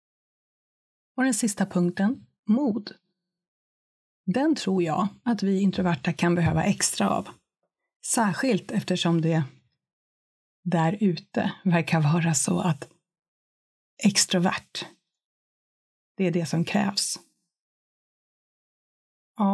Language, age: Swedish, 30-49